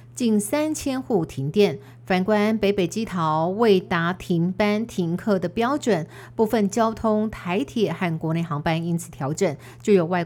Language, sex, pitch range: Chinese, female, 165-210 Hz